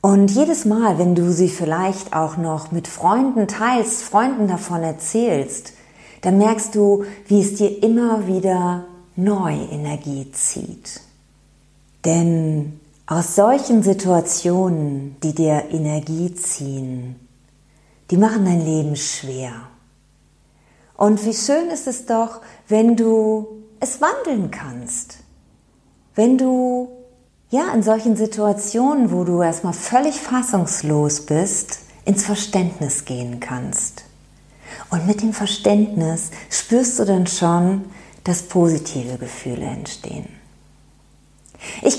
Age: 40-59